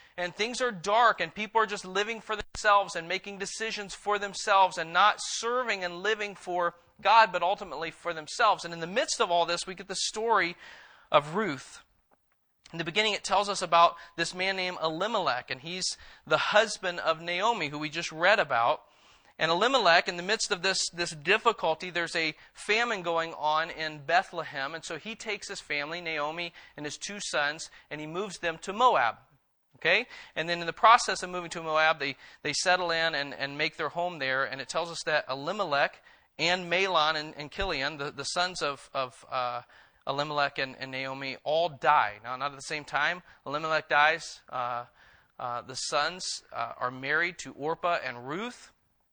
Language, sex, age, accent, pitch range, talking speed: English, male, 40-59, American, 145-190 Hz, 190 wpm